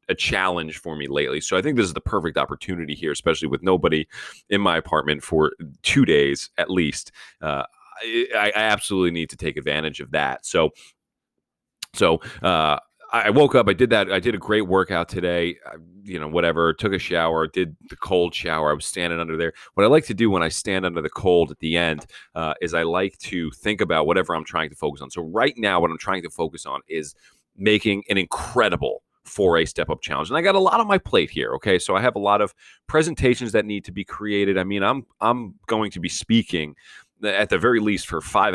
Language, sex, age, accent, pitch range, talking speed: English, male, 30-49, American, 80-100 Hz, 230 wpm